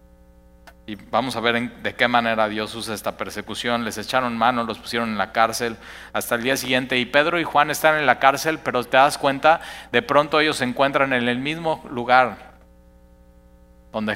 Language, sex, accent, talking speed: Spanish, male, Mexican, 190 wpm